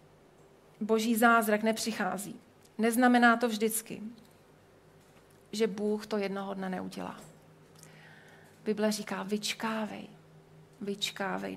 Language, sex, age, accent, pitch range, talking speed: Czech, female, 30-49, native, 205-230 Hz, 85 wpm